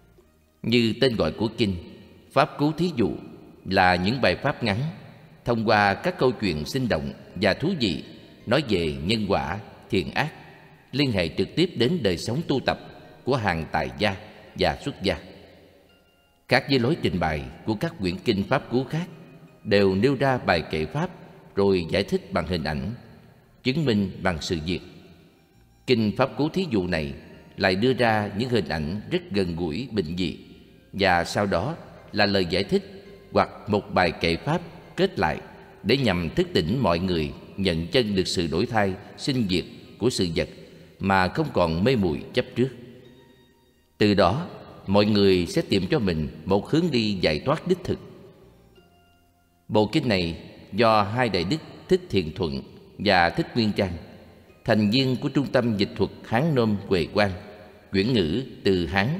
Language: Vietnamese